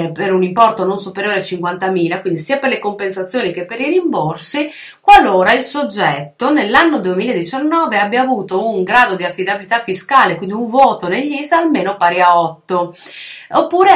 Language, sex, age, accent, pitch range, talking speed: Italian, female, 30-49, native, 180-250 Hz, 165 wpm